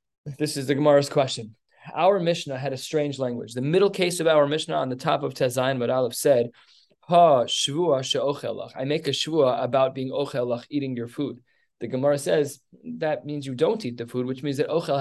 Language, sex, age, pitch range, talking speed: English, male, 20-39, 130-170 Hz, 200 wpm